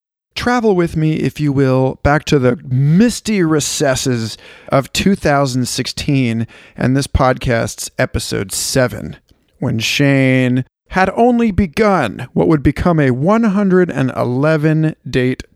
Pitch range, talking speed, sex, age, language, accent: 125-175 Hz, 110 wpm, male, 40-59, English, American